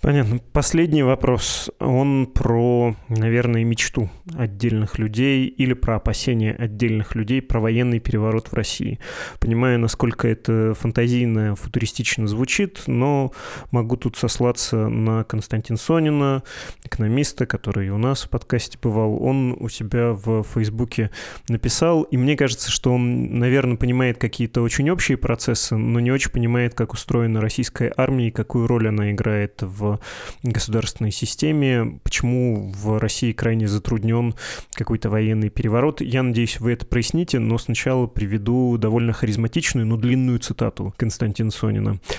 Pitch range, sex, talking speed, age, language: 110-130 Hz, male, 135 wpm, 20-39, Russian